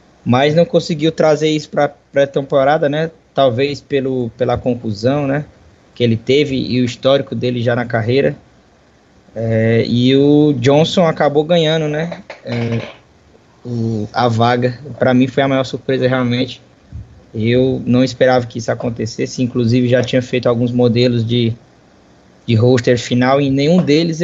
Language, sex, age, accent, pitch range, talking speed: Portuguese, male, 20-39, Brazilian, 120-140 Hz, 150 wpm